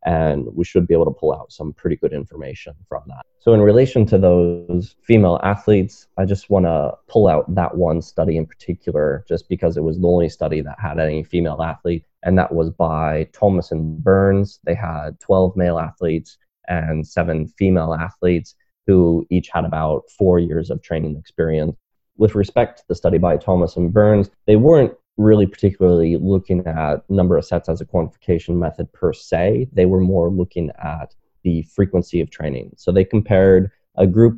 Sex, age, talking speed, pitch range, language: male, 20-39, 185 wpm, 80-100 Hz, English